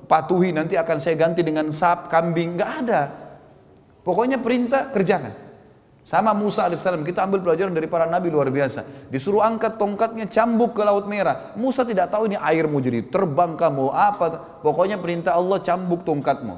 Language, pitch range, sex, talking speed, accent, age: Indonesian, 160-220 Hz, male, 165 wpm, native, 30-49